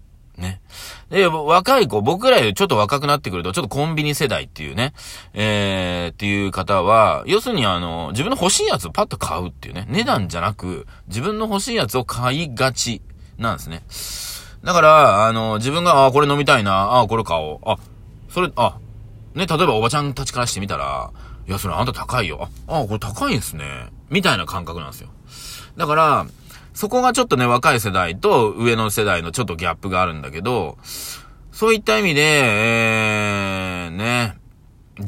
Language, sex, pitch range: Japanese, male, 95-145 Hz